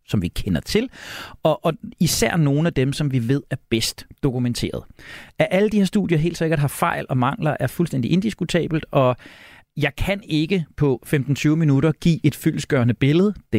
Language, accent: Danish, native